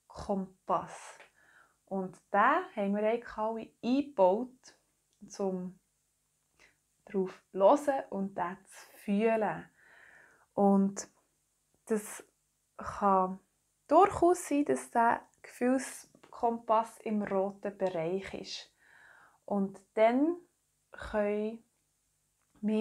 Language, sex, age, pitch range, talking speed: German, female, 20-39, 195-235 Hz, 80 wpm